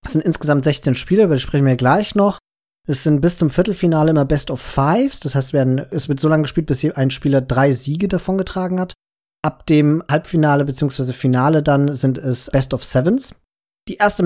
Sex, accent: male, German